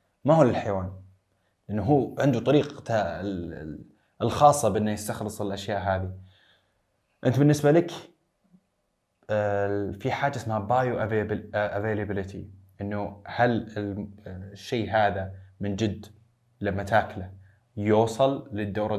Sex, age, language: male, 20-39, Arabic